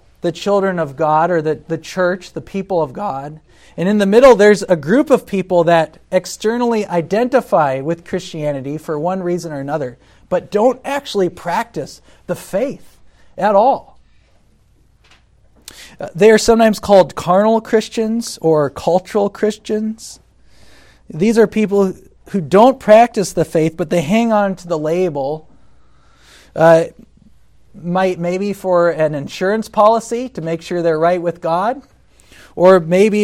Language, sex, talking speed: English, male, 140 wpm